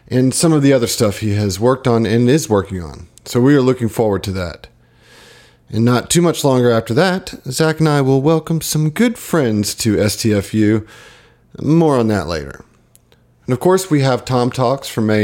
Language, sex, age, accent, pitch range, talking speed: English, male, 40-59, American, 105-135 Hz, 200 wpm